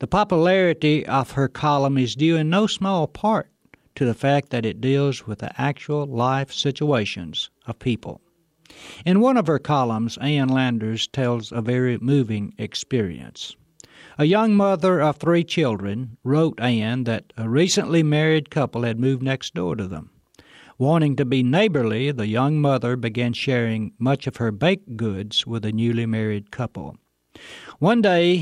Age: 60-79